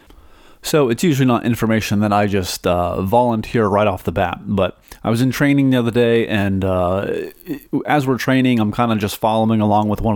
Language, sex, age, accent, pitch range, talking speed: English, male, 30-49, American, 100-125 Hz, 205 wpm